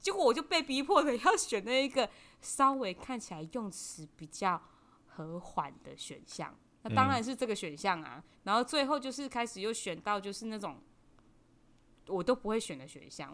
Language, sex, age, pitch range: Chinese, female, 20-39, 165-235 Hz